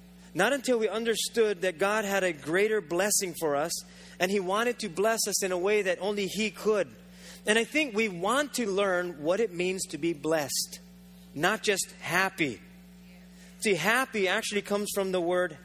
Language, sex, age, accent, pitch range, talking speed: English, male, 30-49, American, 170-205 Hz, 185 wpm